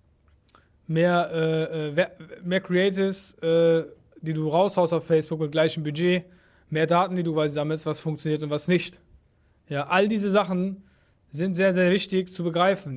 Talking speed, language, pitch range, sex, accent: 155 wpm, German, 160-200 Hz, male, German